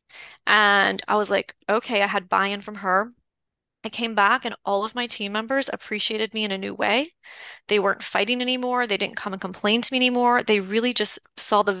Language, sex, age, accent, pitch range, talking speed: English, female, 20-39, American, 200-235 Hz, 215 wpm